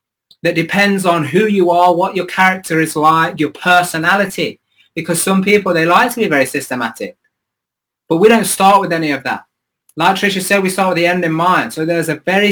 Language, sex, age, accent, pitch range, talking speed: English, male, 20-39, British, 155-195 Hz, 210 wpm